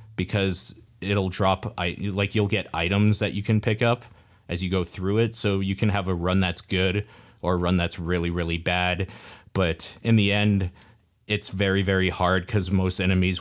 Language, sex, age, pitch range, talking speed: English, male, 20-39, 90-110 Hz, 190 wpm